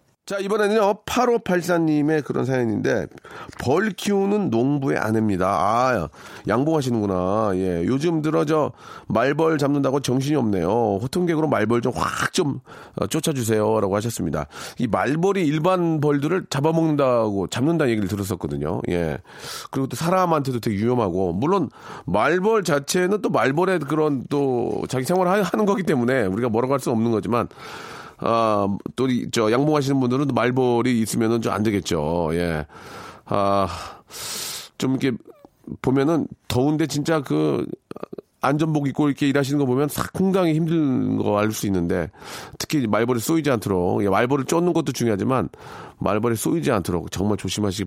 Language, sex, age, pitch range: Korean, male, 40-59, 105-155 Hz